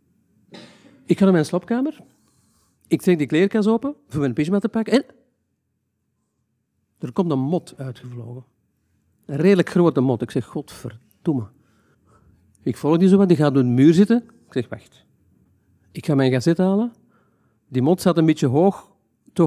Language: Dutch